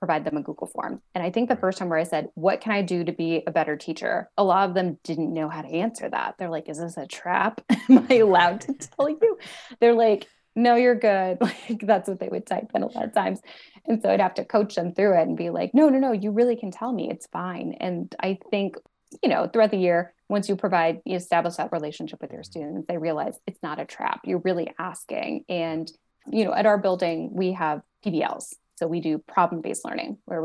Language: English